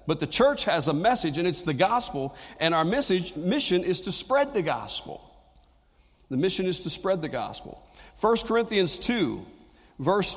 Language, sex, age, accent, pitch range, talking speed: English, male, 50-69, American, 125-185 Hz, 175 wpm